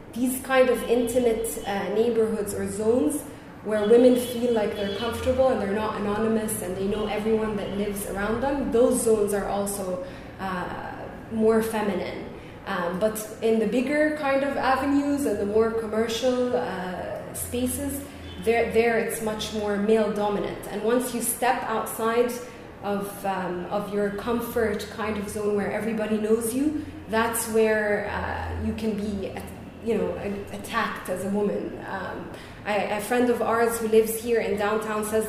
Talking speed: 165 wpm